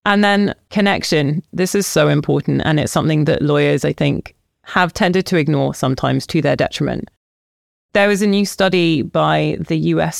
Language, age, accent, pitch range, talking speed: English, 30-49, British, 145-165 Hz, 175 wpm